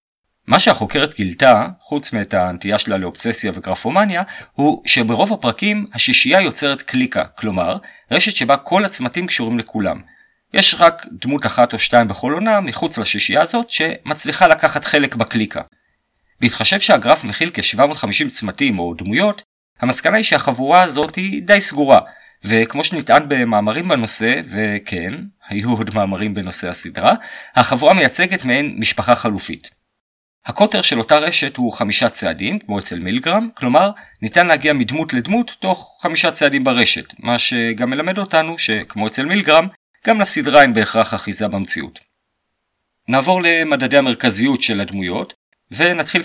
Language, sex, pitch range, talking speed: Hebrew, male, 115-185 Hz, 135 wpm